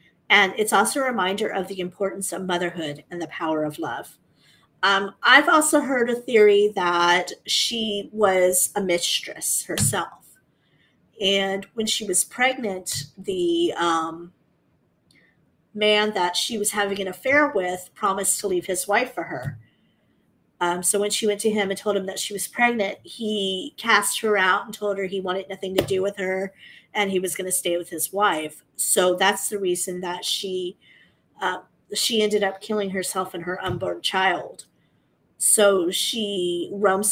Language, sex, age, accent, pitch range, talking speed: English, female, 40-59, American, 180-210 Hz, 170 wpm